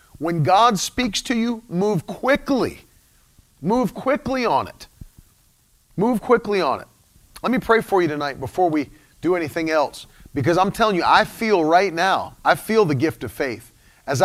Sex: male